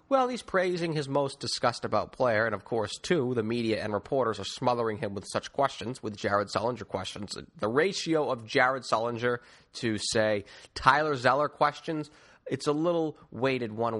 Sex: male